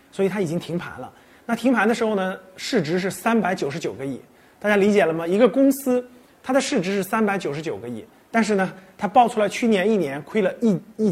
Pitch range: 175-230 Hz